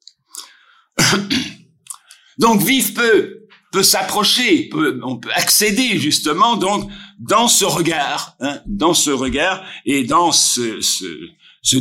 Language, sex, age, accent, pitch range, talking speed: French, male, 60-79, French, 175-255 Hz, 115 wpm